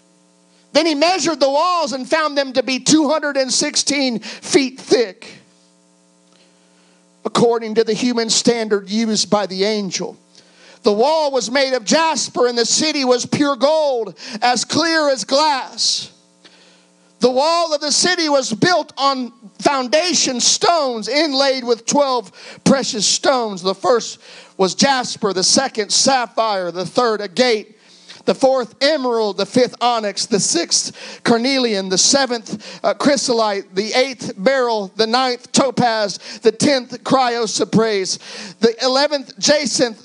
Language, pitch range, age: English, 215-280 Hz, 50-69